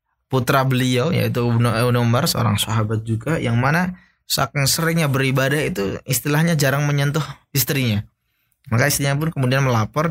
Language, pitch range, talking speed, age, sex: Indonesian, 115-140 Hz, 135 wpm, 20-39, male